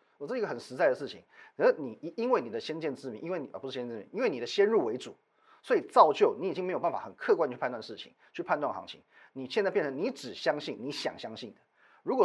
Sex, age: male, 30-49